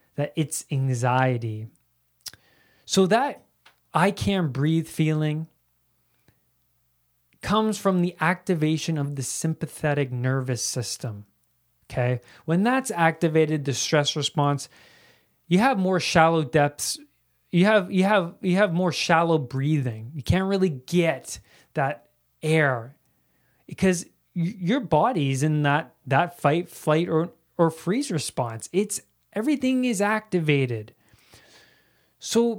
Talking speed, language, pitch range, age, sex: 115 wpm, English, 130-180 Hz, 20-39, male